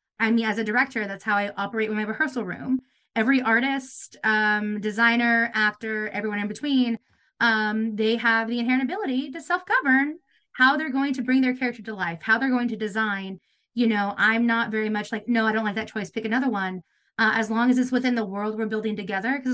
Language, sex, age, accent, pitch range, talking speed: English, female, 20-39, American, 215-255 Hz, 220 wpm